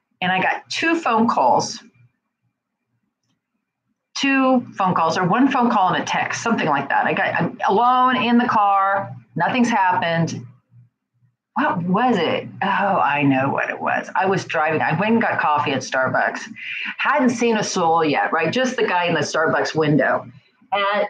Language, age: English, 40-59